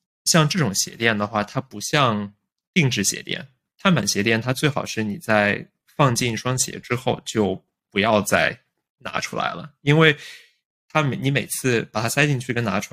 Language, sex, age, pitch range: Chinese, male, 20-39, 105-140 Hz